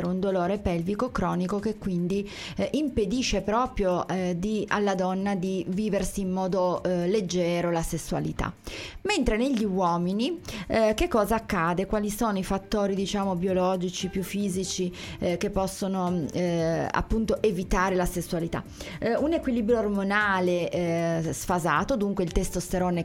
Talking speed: 135 wpm